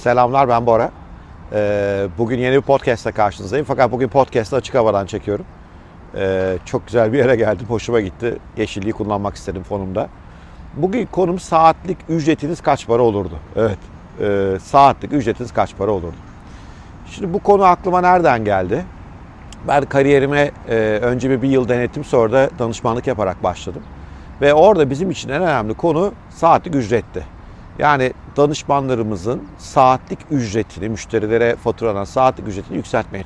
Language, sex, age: Turkish, male, 50-69